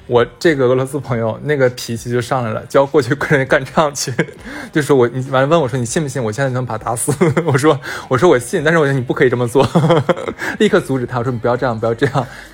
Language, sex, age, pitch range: Chinese, male, 20-39, 125-165 Hz